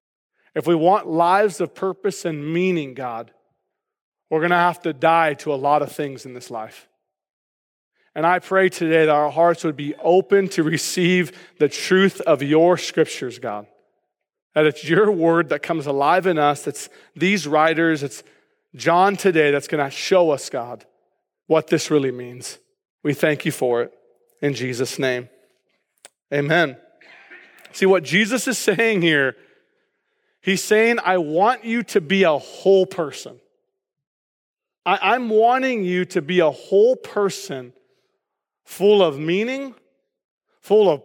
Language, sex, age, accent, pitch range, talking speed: English, male, 40-59, American, 155-210 Hz, 150 wpm